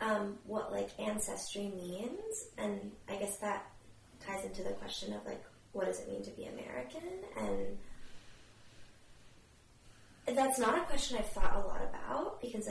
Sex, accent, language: female, American, English